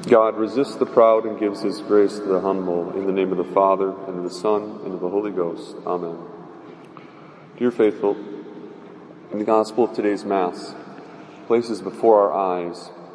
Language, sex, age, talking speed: English, male, 40-59, 180 wpm